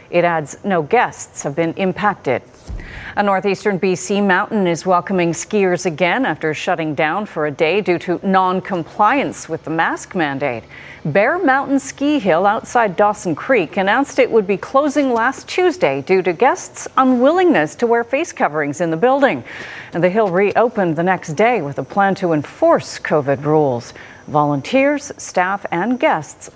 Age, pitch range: 40-59, 165-230 Hz